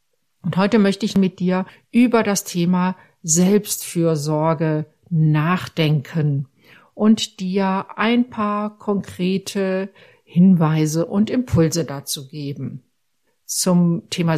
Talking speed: 95 wpm